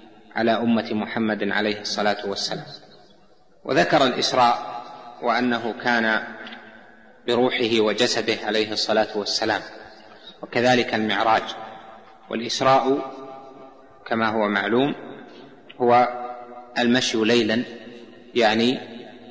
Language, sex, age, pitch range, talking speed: Arabic, male, 30-49, 110-120 Hz, 80 wpm